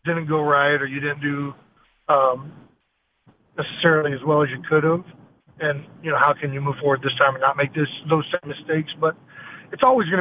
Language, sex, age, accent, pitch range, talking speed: English, male, 50-69, American, 140-160 Hz, 210 wpm